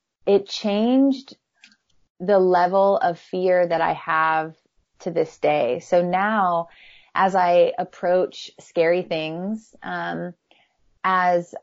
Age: 20-39